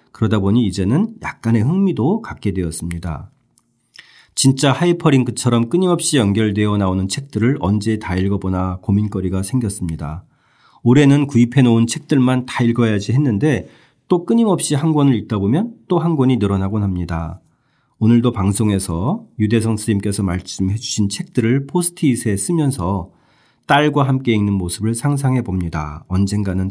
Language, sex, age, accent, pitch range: Korean, male, 40-59, native, 95-135 Hz